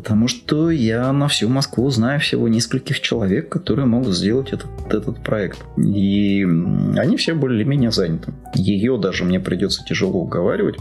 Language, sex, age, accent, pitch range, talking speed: Russian, male, 20-39, native, 95-120 Hz, 150 wpm